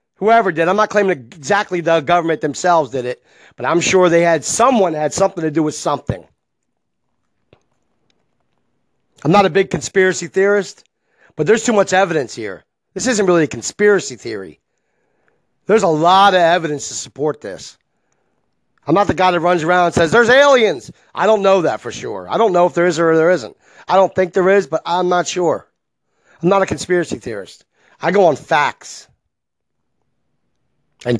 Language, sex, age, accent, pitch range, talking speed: English, male, 40-59, American, 165-205 Hz, 180 wpm